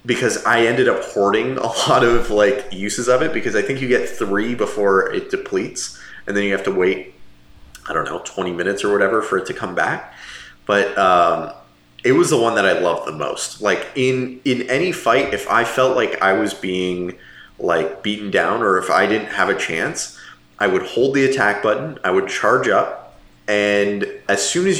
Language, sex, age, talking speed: English, male, 30-49, 210 wpm